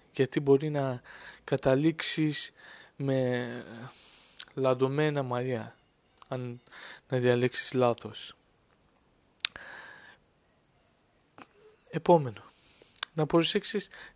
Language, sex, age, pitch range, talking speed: Greek, male, 20-39, 125-155 Hz, 60 wpm